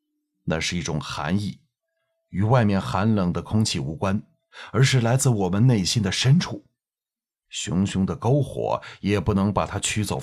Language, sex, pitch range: Chinese, male, 105-170 Hz